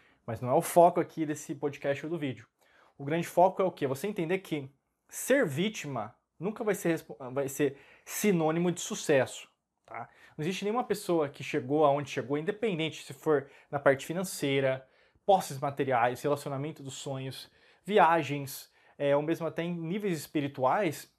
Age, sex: 20-39, male